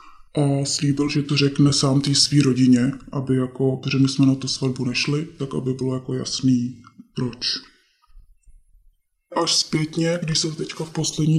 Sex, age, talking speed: female, 20-39, 165 wpm